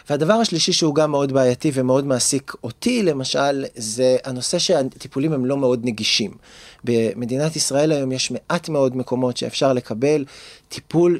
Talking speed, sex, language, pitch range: 145 wpm, male, Hebrew, 130-175 Hz